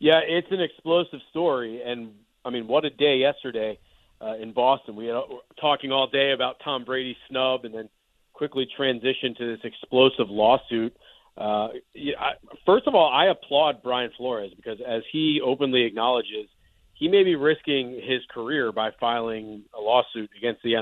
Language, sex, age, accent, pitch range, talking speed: English, male, 40-59, American, 115-140 Hz, 165 wpm